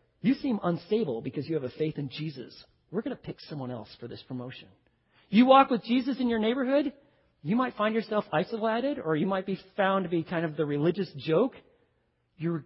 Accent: American